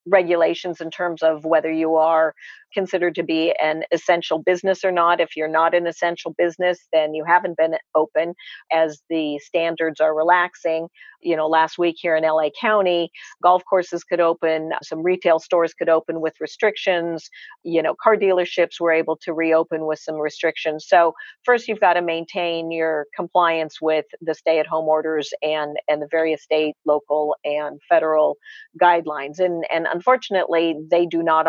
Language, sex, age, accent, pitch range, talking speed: English, female, 50-69, American, 155-175 Hz, 170 wpm